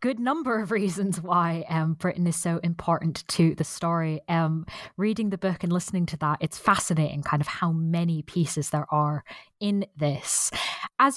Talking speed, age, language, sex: 175 wpm, 20-39, English, female